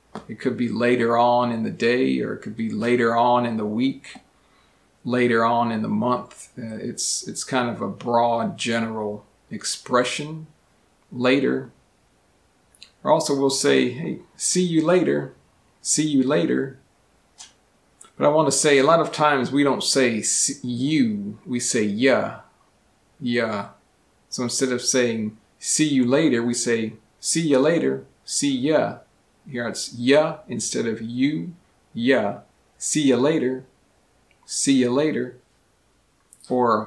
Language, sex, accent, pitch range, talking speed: English, male, American, 115-140 Hz, 145 wpm